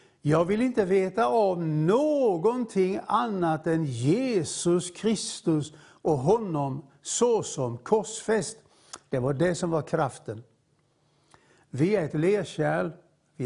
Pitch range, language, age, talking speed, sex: 145-190 Hz, English, 60-79, 110 wpm, male